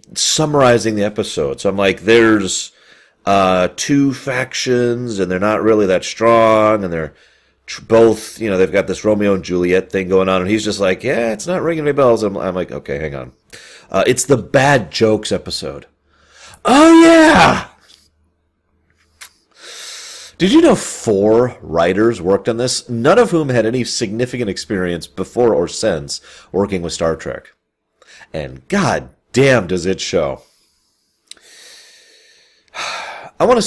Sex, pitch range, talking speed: male, 90-120 Hz, 155 wpm